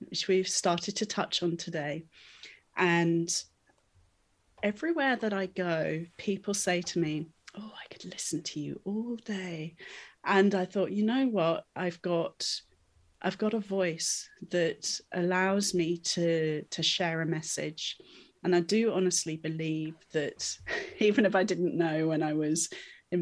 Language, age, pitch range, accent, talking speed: English, 30-49, 165-195 Hz, British, 150 wpm